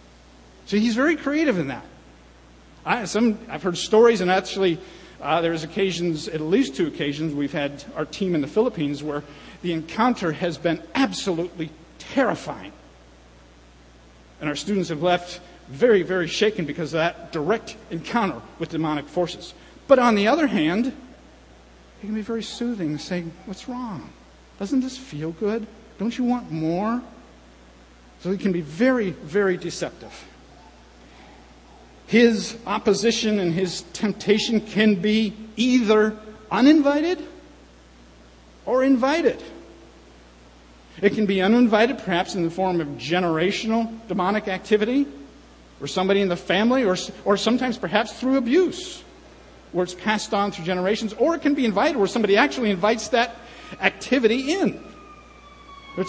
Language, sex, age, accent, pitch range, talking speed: English, male, 50-69, American, 160-225 Hz, 140 wpm